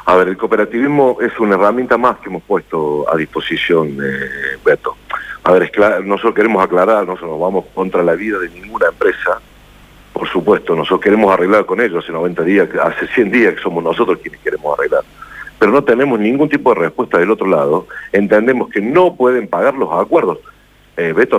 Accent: Argentinian